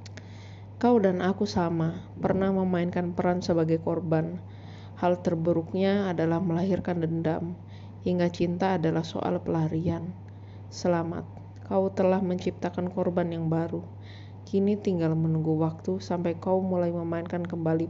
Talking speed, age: 115 wpm, 20-39